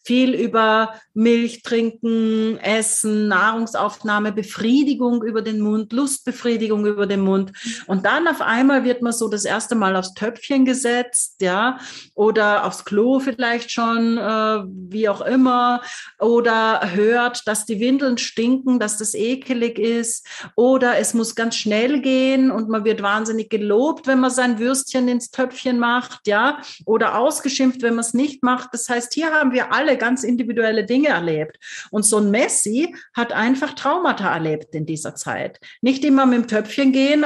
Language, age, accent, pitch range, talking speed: German, 40-59, German, 210-260 Hz, 160 wpm